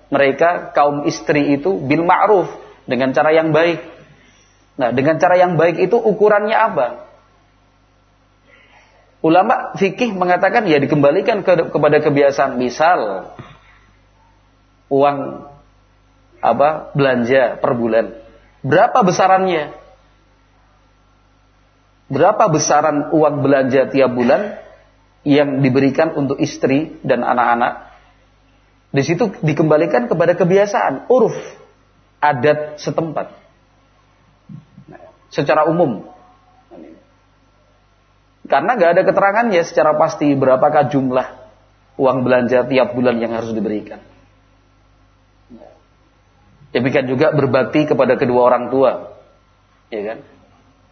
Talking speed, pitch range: 95 wpm, 95-155 Hz